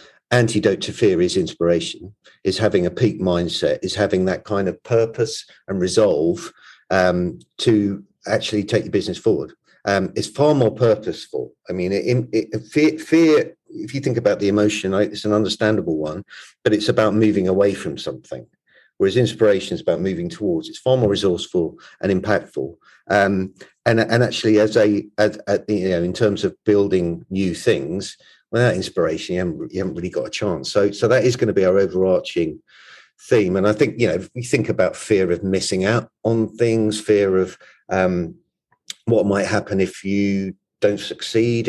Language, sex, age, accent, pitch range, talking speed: English, male, 50-69, British, 95-120 Hz, 175 wpm